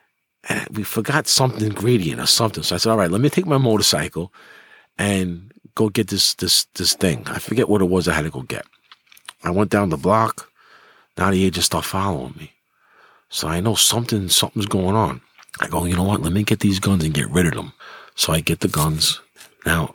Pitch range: 90-130 Hz